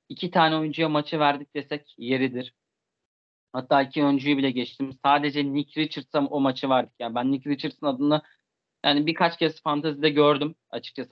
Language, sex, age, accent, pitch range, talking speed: Turkish, male, 30-49, native, 125-150 Hz, 160 wpm